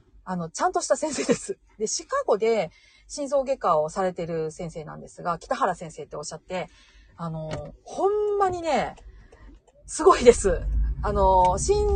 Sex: female